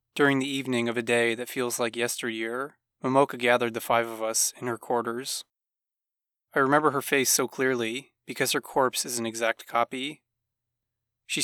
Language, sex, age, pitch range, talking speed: English, male, 20-39, 115-125 Hz, 175 wpm